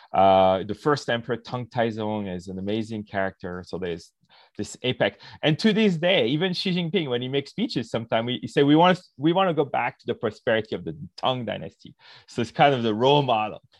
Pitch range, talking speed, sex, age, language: 110-145 Hz, 220 wpm, male, 30-49, English